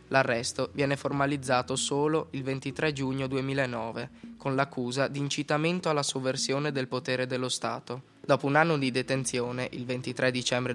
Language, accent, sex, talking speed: Italian, native, male, 145 wpm